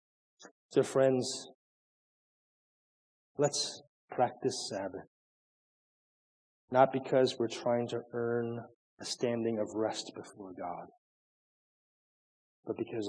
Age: 40-59